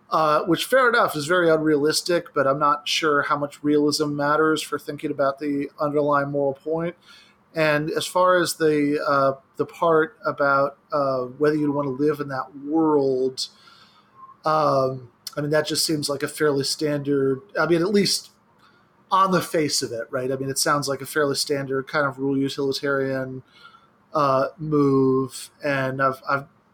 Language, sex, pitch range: English, male, 140-155 Hz